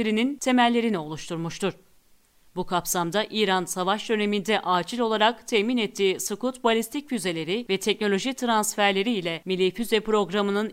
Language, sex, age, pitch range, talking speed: Turkish, female, 40-59, 205-250 Hz, 110 wpm